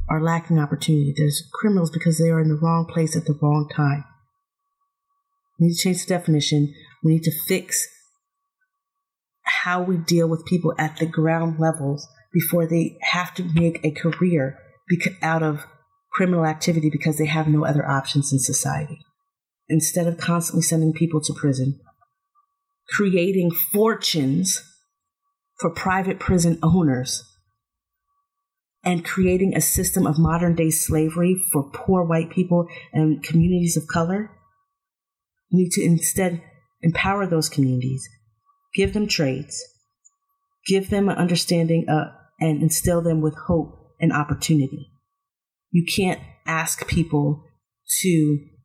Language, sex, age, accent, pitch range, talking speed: English, female, 40-59, American, 155-195 Hz, 135 wpm